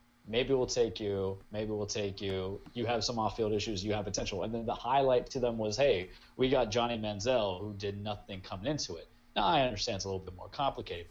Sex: male